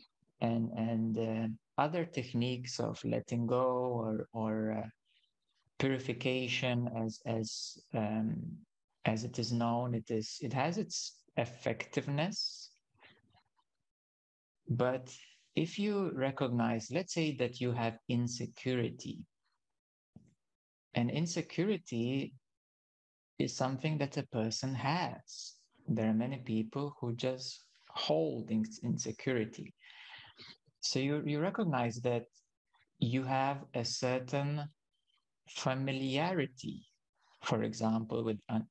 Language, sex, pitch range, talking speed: English, male, 115-135 Hz, 100 wpm